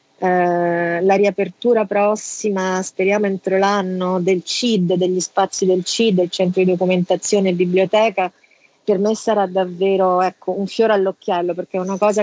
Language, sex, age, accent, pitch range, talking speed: Italian, female, 40-59, native, 185-205 Hz, 150 wpm